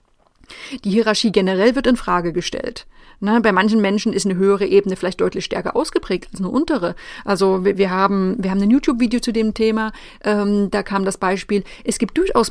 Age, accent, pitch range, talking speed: 30-49, German, 195-245 Hz, 195 wpm